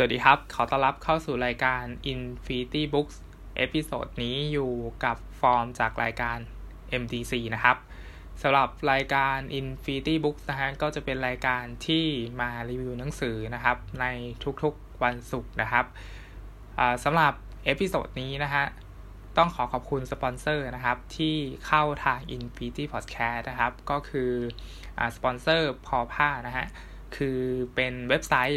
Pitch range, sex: 120-140 Hz, male